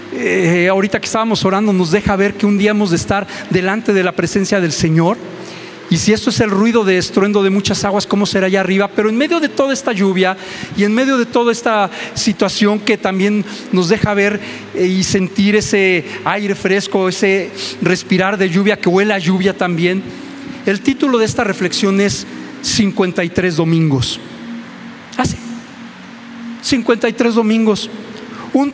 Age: 40-59